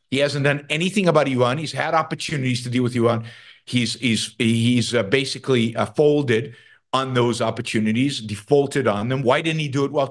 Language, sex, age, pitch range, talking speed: English, male, 50-69, 115-150 Hz, 180 wpm